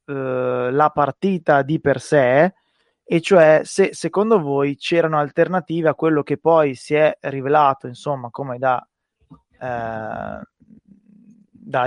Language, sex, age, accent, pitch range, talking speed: Italian, male, 20-39, native, 130-155 Hz, 120 wpm